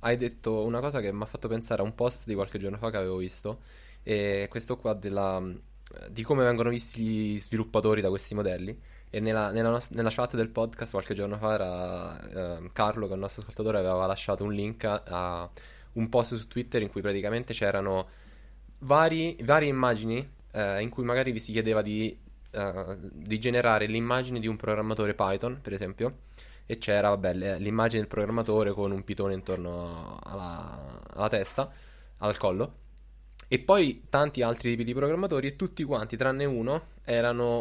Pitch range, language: 95-120 Hz, Italian